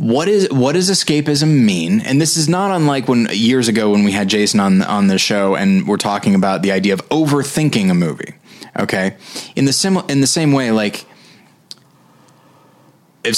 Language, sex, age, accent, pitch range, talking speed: English, male, 20-39, American, 110-165 Hz, 190 wpm